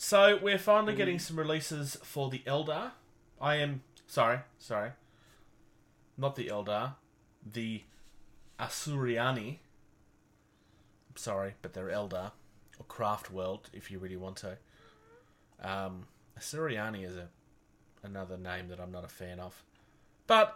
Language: English